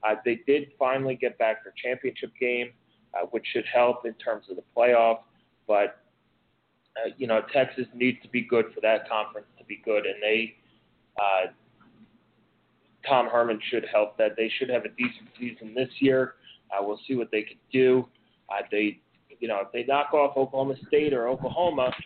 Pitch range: 120-140 Hz